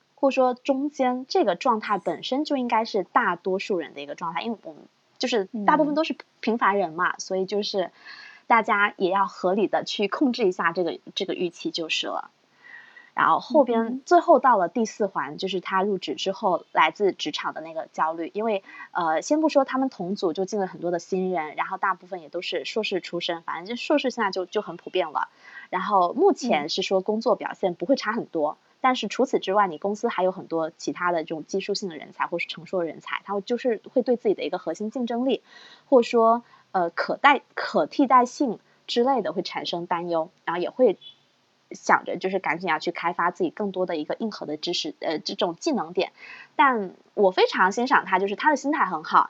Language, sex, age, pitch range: Chinese, female, 20-39, 185-260 Hz